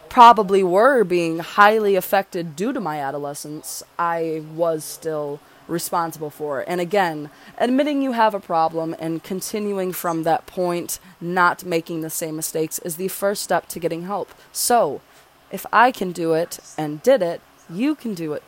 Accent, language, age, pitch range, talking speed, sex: American, English, 20-39, 165-215 Hz, 165 wpm, female